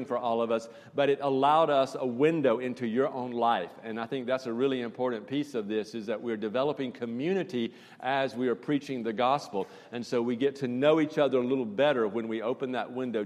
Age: 50-69